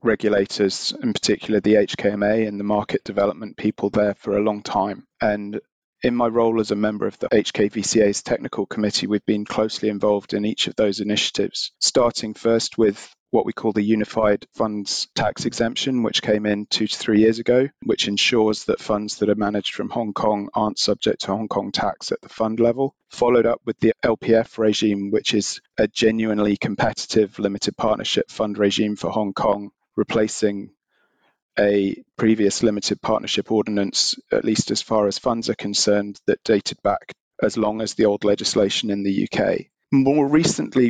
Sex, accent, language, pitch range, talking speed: male, British, English, 100-110 Hz, 180 wpm